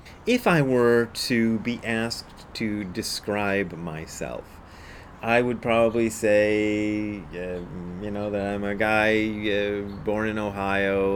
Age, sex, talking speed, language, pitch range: 30-49, male, 130 wpm, English, 90-110 Hz